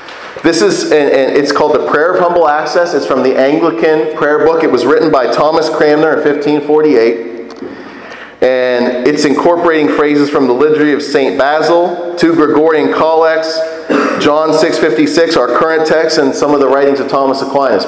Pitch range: 145-215 Hz